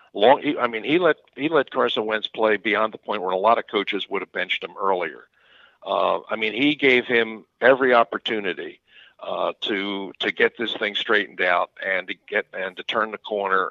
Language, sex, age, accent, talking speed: English, male, 50-69, American, 205 wpm